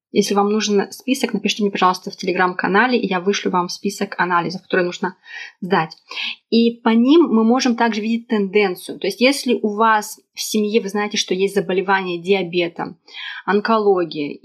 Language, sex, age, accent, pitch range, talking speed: Russian, female, 20-39, native, 190-220 Hz, 165 wpm